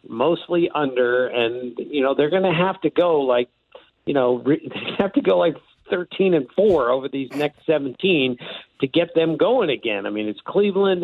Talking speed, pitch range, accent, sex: 195 wpm, 140-195 Hz, American, male